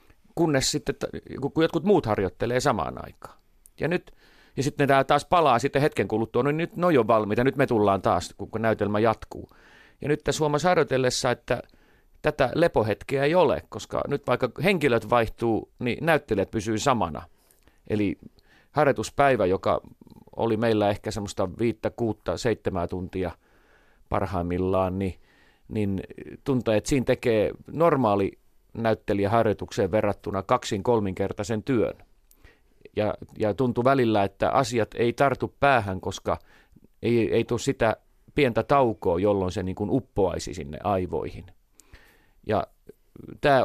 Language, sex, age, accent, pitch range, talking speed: Finnish, male, 40-59, native, 95-130 Hz, 135 wpm